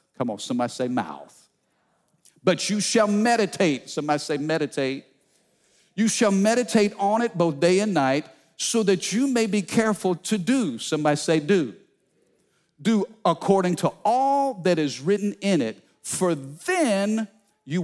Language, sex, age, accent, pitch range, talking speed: English, male, 50-69, American, 135-195 Hz, 150 wpm